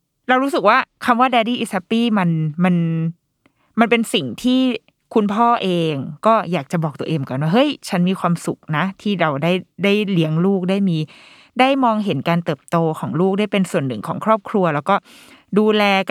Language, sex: Thai, female